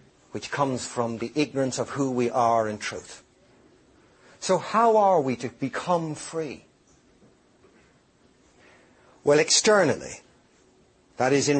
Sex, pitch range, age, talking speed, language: male, 125-160 Hz, 60-79, 120 wpm, English